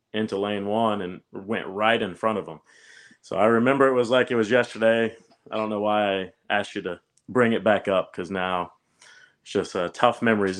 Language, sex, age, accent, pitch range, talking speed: English, male, 30-49, American, 100-115 Hz, 220 wpm